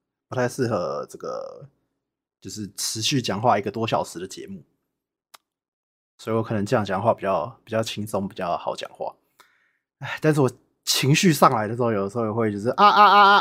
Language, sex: Chinese, male